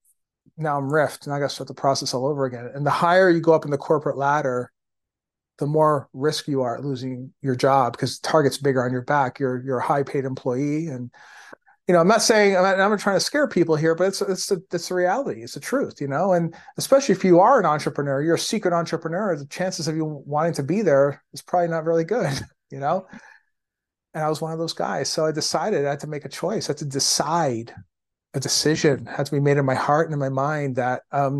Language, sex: English, male